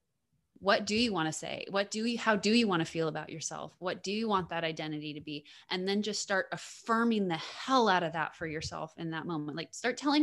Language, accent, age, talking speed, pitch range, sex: English, American, 20-39, 250 wpm, 165-195 Hz, female